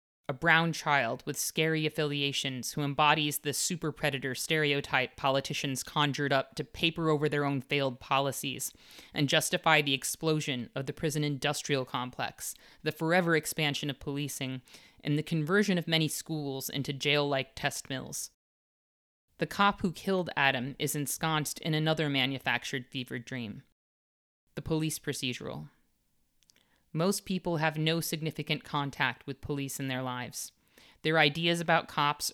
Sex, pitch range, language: female, 135-160 Hz, English